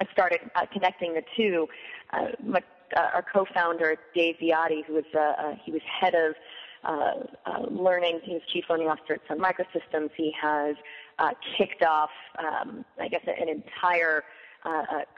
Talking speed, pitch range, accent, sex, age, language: 165 wpm, 155-180 Hz, American, female, 30-49, English